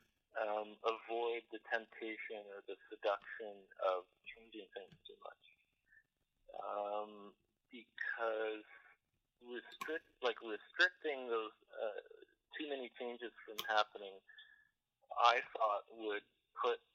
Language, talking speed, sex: English, 95 wpm, male